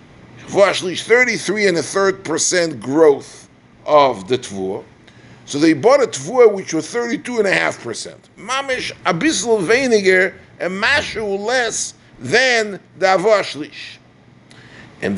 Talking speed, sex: 125 wpm, male